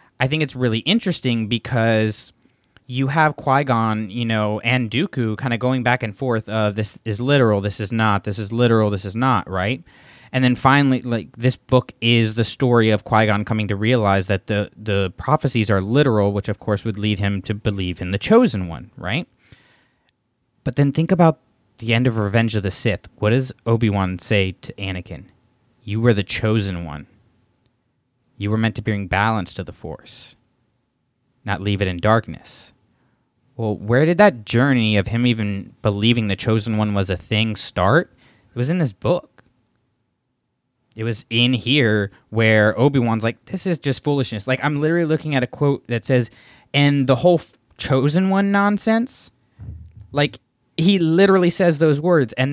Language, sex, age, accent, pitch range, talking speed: English, male, 20-39, American, 105-130 Hz, 180 wpm